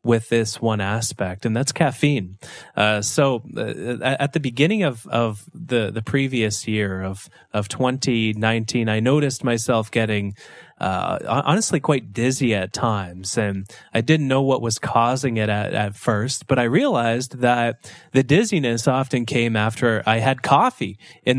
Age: 20-39